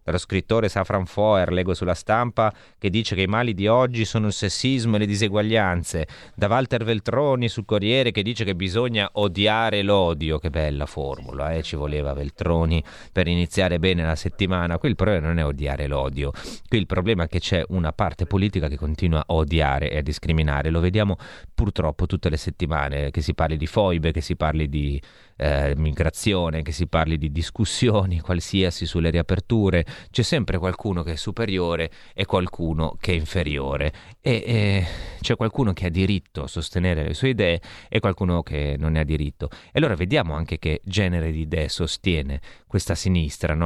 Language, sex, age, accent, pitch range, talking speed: Italian, male, 30-49, native, 80-105 Hz, 180 wpm